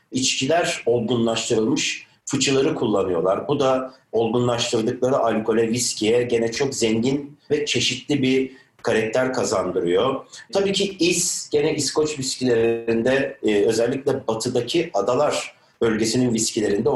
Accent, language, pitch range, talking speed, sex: native, Turkish, 115-145 Hz, 105 wpm, male